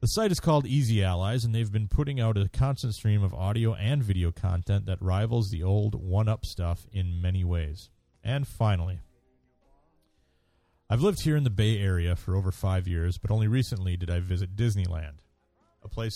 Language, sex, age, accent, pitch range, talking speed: English, male, 30-49, American, 90-110 Hz, 185 wpm